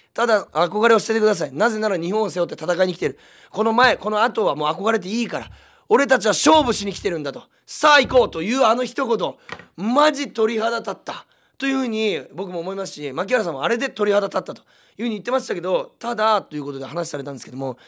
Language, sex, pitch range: Japanese, male, 150-230 Hz